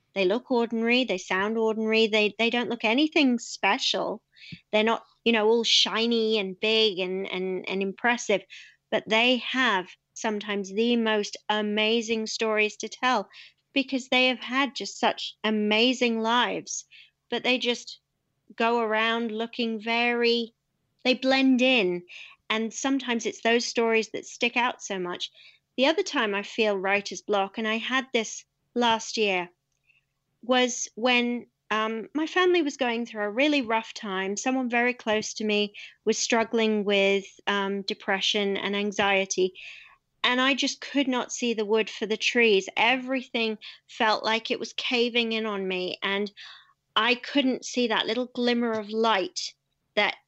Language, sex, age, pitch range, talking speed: English, female, 40-59, 210-245 Hz, 155 wpm